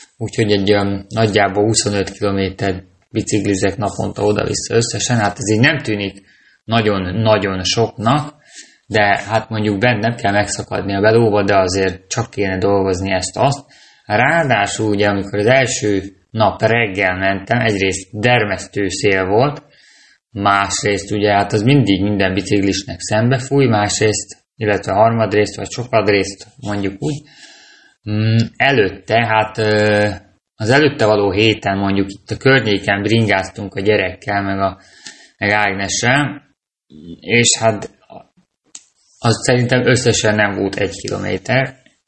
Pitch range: 100-115 Hz